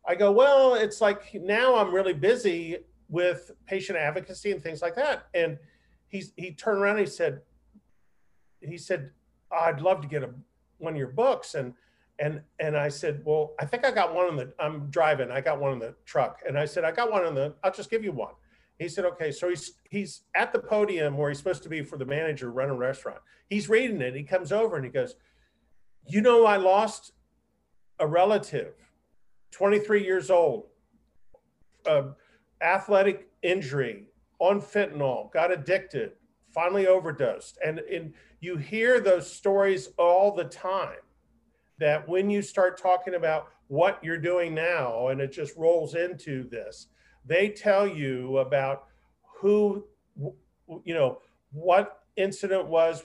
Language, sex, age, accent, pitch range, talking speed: English, male, 40-59, American, 150-200 Hz, 170 wpm